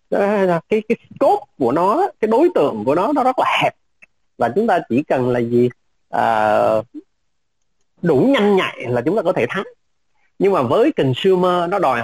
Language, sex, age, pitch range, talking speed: Vietnamese, male, 30-49, 135-205 Hz, 185 wpm